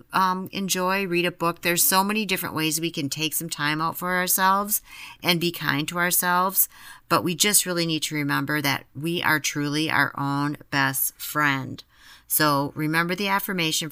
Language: English